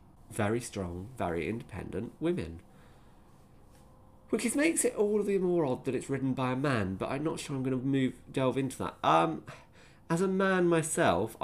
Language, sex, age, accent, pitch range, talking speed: English, male, 20-39, British, 95-120 Hz, 185 wpm